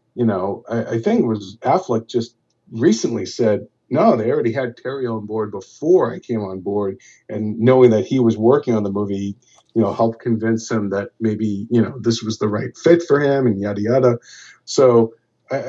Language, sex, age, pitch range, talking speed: English, male, 50-69, 110-130 Hz, 205 wpm